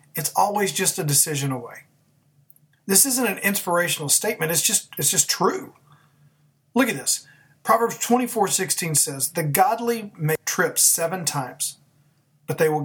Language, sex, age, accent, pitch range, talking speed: English, male, 40-59, American, 145-175 Hz, 155 wpm